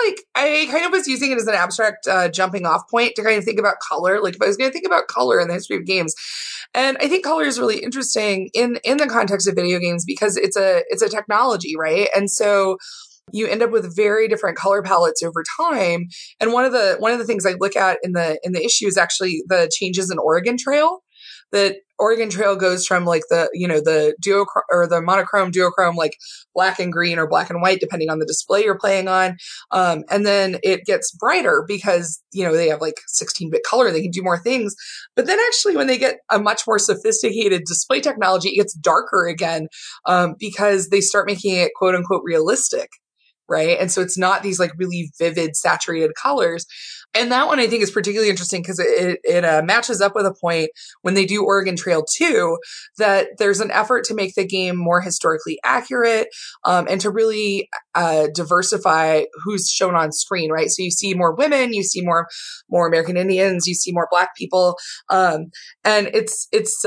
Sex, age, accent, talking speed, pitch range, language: female, 20-39, American, 220 wpm, 175-235 Hz, English